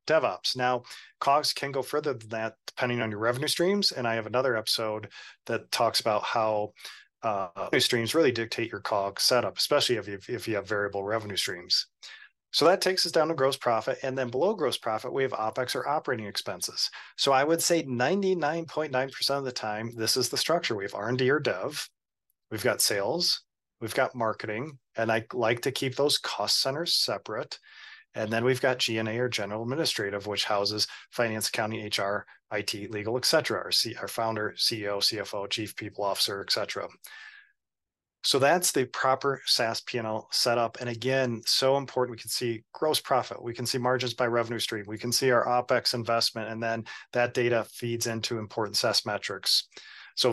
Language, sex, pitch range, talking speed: English, male, 110-135 Hz, 185 wpm